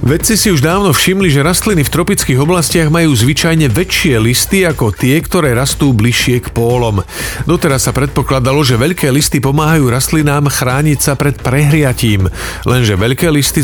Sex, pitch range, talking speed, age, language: male, 120-150 Hz, 160 wpm, 40-59, Slovak